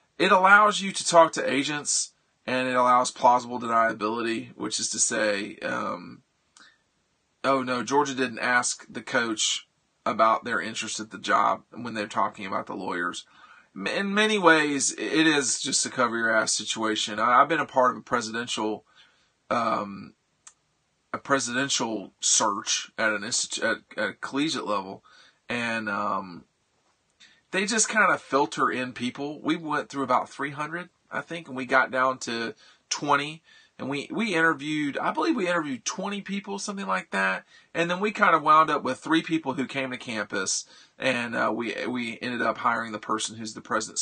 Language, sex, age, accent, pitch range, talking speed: English, male, 40-59, American, 120-165 Hz, 175 wpm